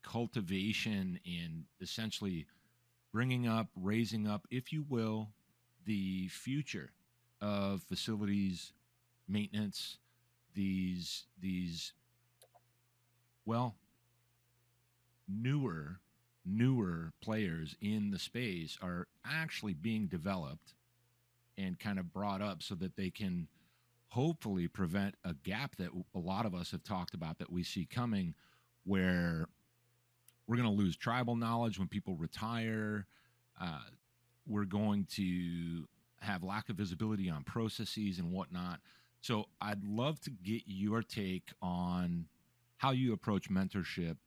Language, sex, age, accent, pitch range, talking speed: English, male, 50-69, American, 95-120 Hz, 120 wpm